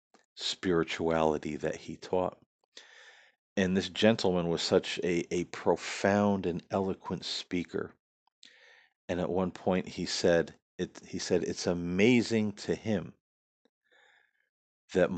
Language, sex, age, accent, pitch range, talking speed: English, male, 40-59, American, 85-100 Hz, 115 wpm